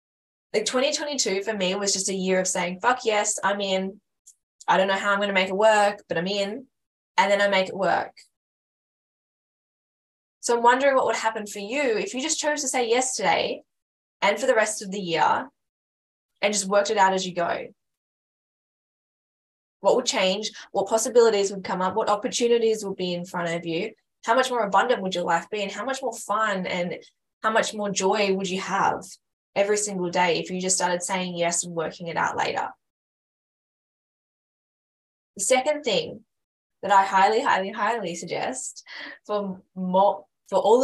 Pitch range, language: 185-225 Hz, English